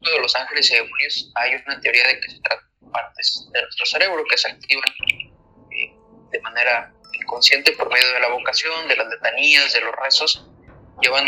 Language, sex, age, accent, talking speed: Spanish, male, 20-39, Mexican, 185 wpm